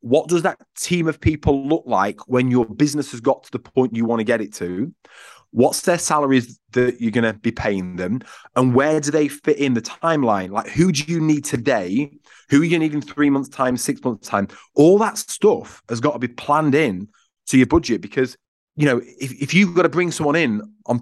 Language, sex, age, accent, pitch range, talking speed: English, male, 30-49, British, 120-155 Hz, 235 wpm